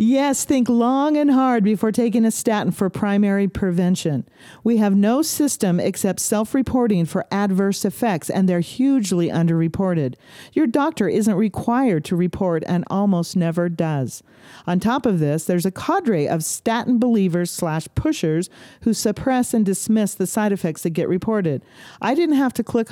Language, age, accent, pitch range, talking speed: English, 50-69, American, 170-225 Hz, 160 wpm